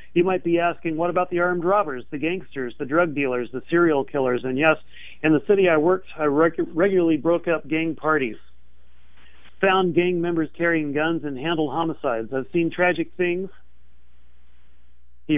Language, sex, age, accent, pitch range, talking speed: English, male, 40-59, American, 140-170 Hz, 170 wpm